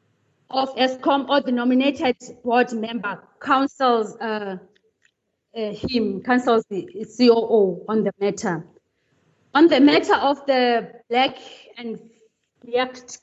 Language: English